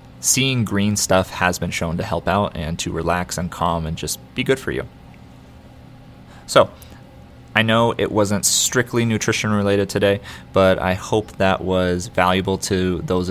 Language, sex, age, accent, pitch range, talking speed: English, male, 30-49, American, 90-100 Hz, 165 wpm